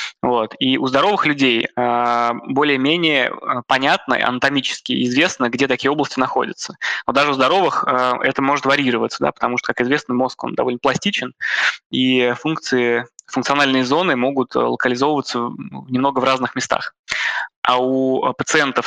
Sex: male